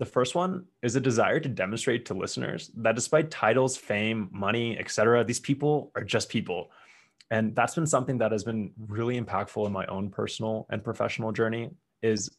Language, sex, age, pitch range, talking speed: English, male, 20-39, 100-120 Hz, 190 wpm